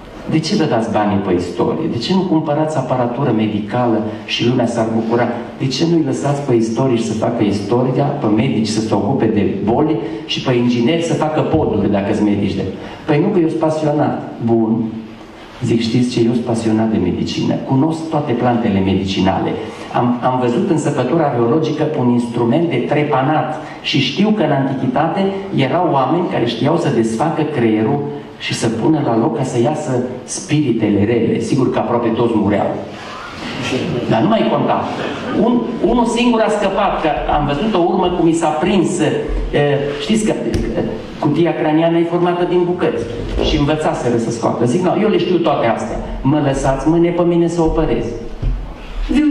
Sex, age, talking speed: male, 40-59, 175 wpm